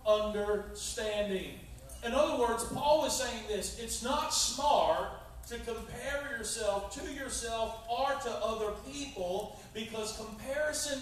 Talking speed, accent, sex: 120 wpm, American, male